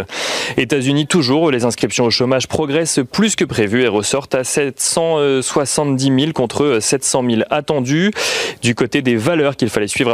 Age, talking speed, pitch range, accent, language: 30-49, 155 wpm, 120-155 Hz, French, French